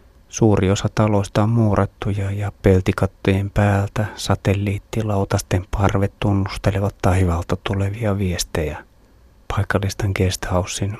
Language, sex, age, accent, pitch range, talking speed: Finnish, male, 30-49, native, 95-105 Hz, 85 wpm